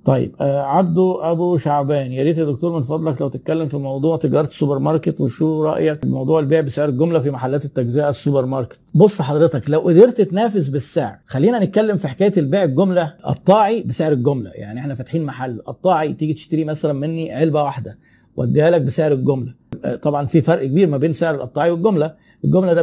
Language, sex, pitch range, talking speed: Arabic, male, 145-180 Hz, 185 wpm